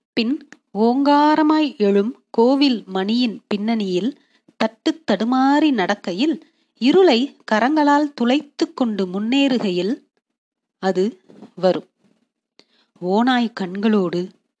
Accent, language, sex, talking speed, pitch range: native, Tamil, female, 60 wpm, 205-280 Hz